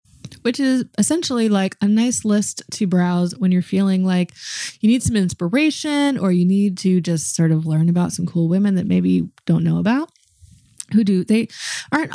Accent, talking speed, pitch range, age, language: American, 195 wpm, 170-215 Hz, 20-39, English